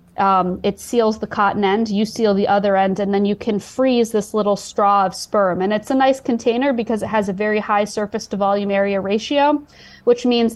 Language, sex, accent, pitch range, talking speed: English, female, American, 200-230 Hz, 220 wpm